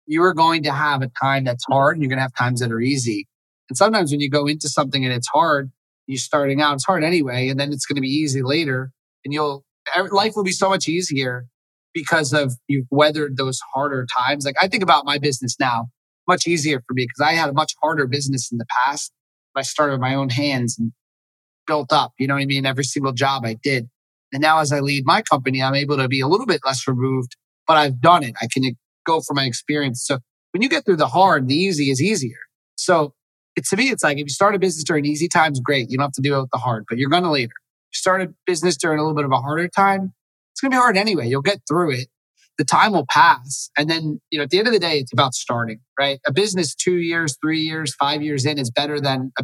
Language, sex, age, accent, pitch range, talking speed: English, male, 30-49, American, 130-155 Hz, 265 wpm